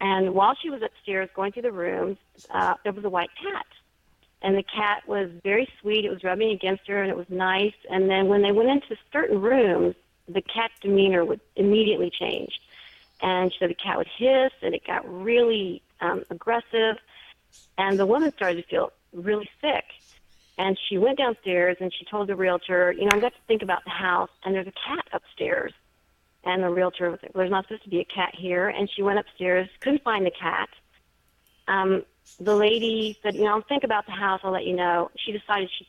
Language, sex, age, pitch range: English, female, 40-59, 180-210 Hz